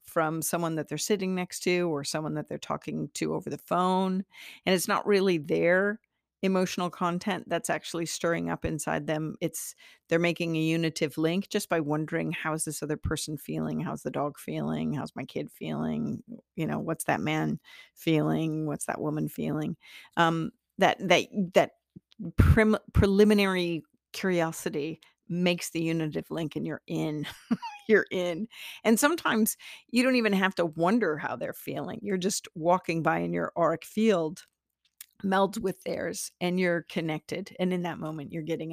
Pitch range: 155-190 Hz